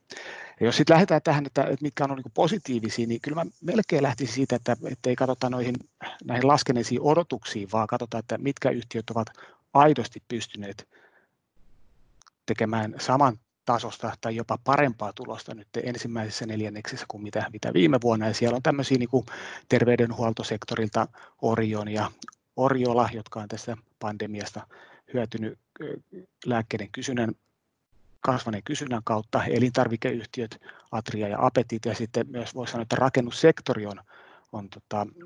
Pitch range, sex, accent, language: 110-130 Hz, male, native, Finnish